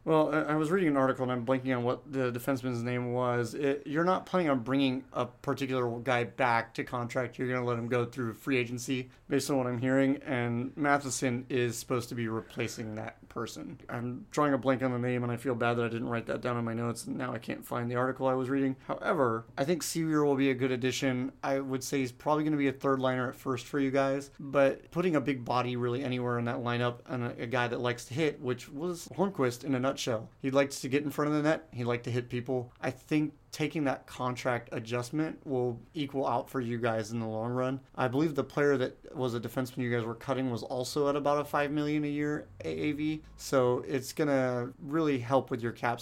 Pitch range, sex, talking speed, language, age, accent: 120-140 Hz, male, 245 wpm, English, 30-49, American